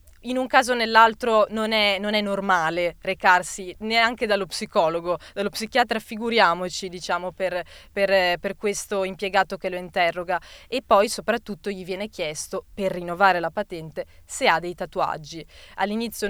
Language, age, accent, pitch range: Italian, 20-39, native, 185-215 Hz